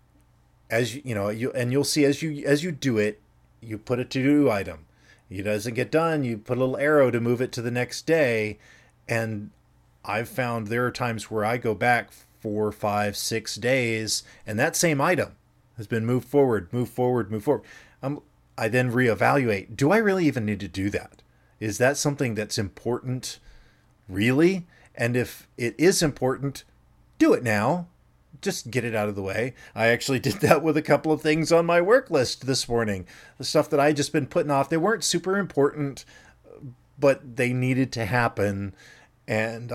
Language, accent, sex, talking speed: English, American, male, 195 wpm